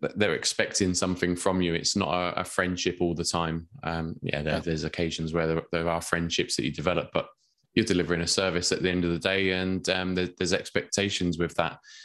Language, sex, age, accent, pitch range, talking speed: English, male, 20-39, British, 90-110 Hz, 210 wpm